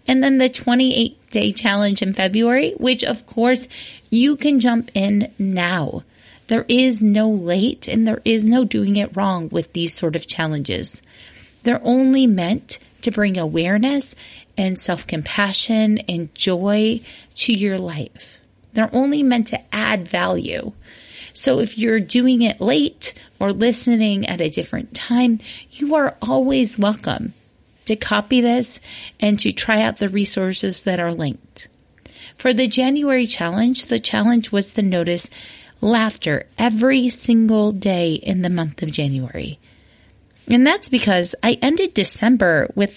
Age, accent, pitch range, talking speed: 30-49, American, 180-240 Hz, 145 wpm